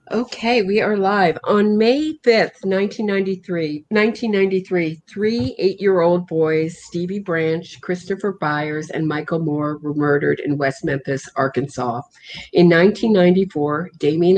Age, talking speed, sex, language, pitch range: 50-69, 120 wpm, female, English, 150-195 Hz